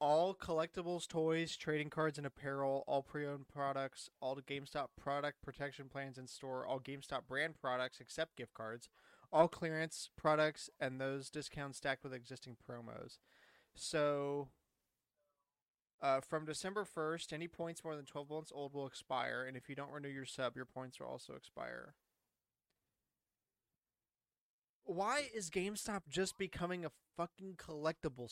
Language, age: English, 20-39